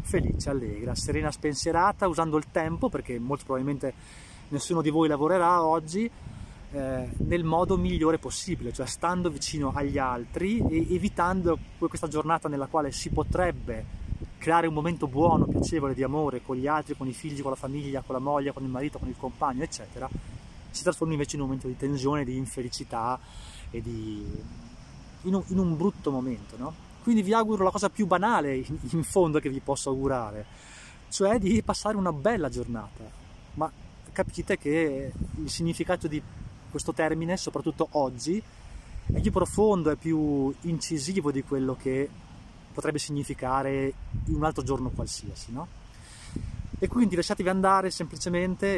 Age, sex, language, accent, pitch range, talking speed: 20-39, male, Italian, native, 130-170 Hz, 155 wpm